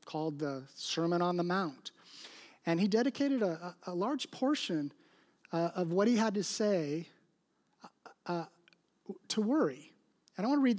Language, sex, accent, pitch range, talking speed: English, male, American, 175-230 Hz, 160 wpm